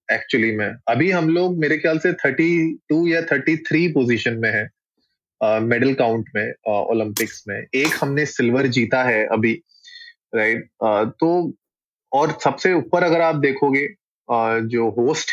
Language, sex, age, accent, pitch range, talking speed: Hindi, male, 20-39, native, 125-160 Hz, 135 wpm